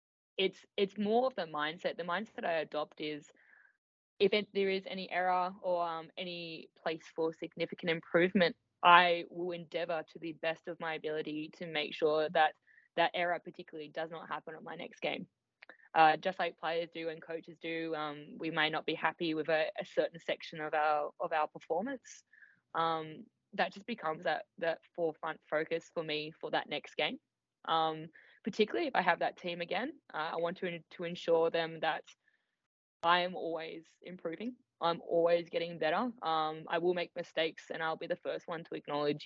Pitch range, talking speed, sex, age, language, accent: 160-185 Hz, 190 wpm, female, 10-29, English, Australian